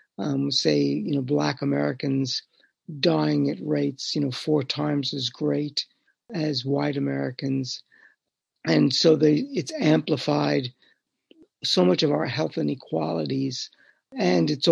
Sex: male